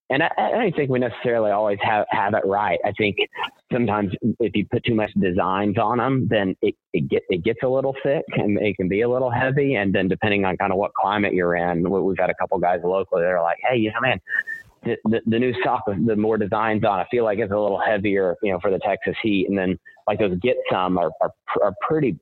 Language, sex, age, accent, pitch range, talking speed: English, male, 30-49, American, 95-125 Hz, 255 wpm